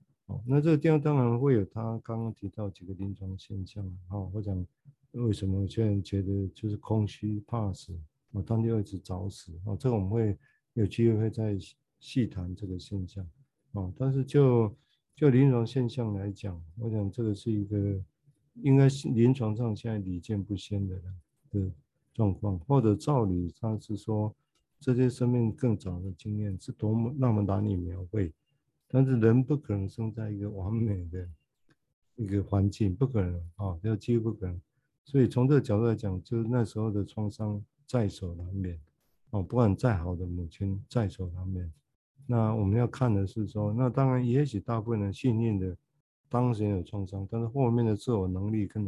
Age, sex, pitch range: 50-69, male, 95-120 Hz